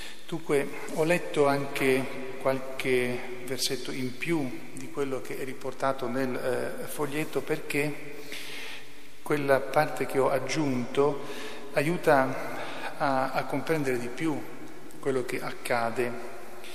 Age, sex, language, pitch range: 40-59, male, Italian, 120-135 Hz